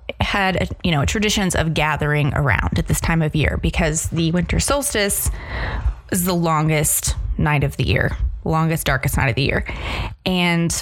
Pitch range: 150-185 Hz